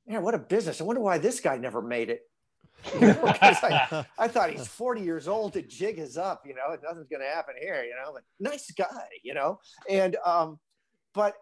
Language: English